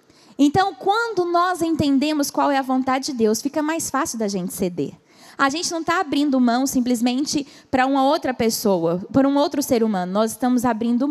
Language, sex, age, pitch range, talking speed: Portuguese, female, 10-29, 245-315 Hz, 190 wpm